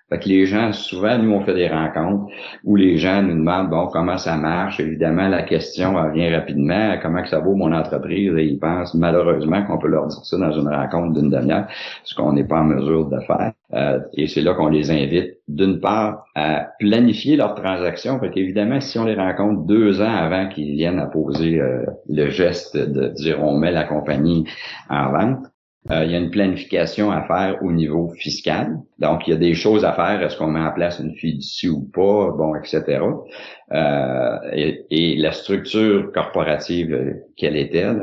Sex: male